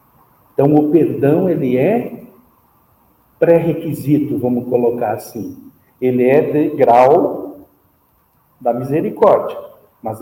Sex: male